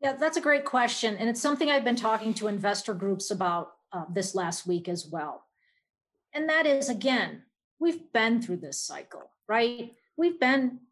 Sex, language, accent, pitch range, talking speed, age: female, English, American, 185-235 Hz, 180 wpm, 40-59